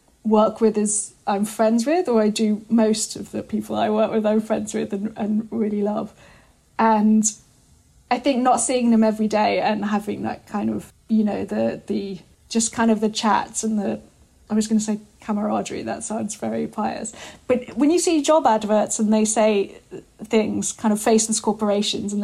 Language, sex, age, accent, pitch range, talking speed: English, female, 10-29, British, 210-245 Hz, 195 wpm